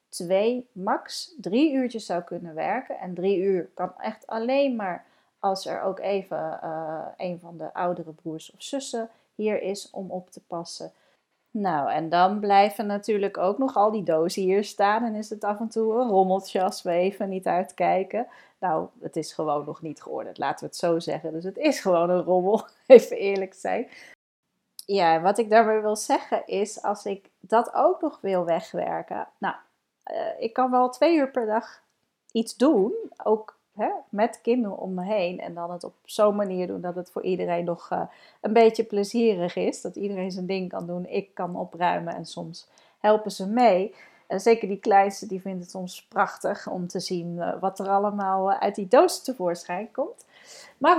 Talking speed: 190 wpm